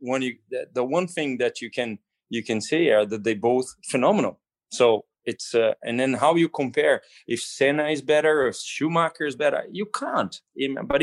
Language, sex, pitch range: English, male, 110-130 Hz